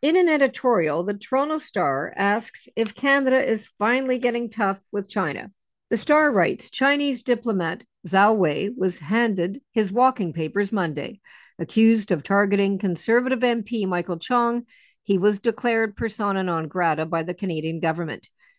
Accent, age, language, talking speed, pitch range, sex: American, 50-69, English, 145 wpm, 180-235 Hz, female